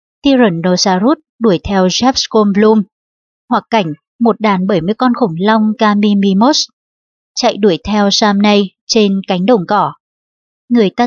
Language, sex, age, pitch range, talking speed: Vietnamese, male, 20-39, 200-235 Hz, 130 wpm